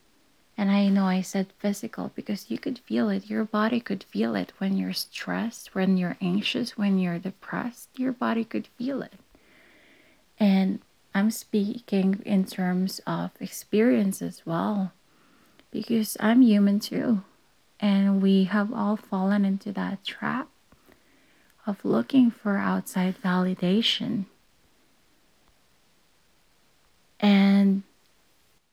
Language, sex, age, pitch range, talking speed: English, female, 30-49, 185-215 Hz, 120 wpm